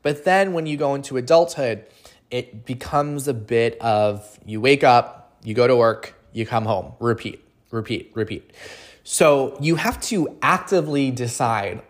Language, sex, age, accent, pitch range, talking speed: English, male, 20-39, American, 115-155 Hz, 155 wpm